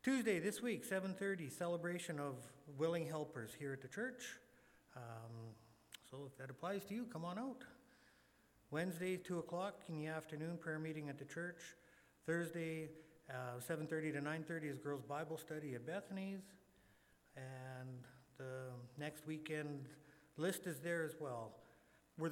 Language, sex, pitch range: English, male, 130-165 Hz